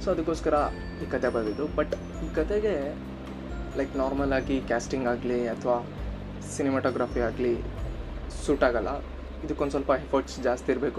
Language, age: Kannada, 20-39